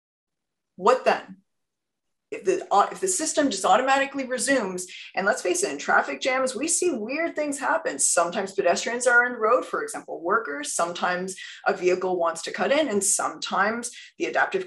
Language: English